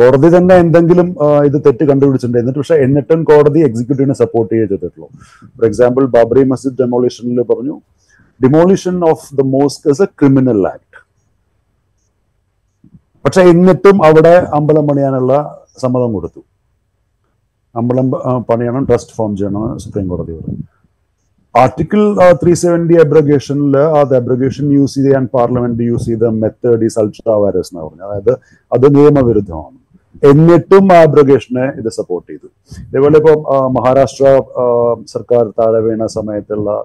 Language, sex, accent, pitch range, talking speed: Malayalam, male, native, 110-150 Hz, 105 wpm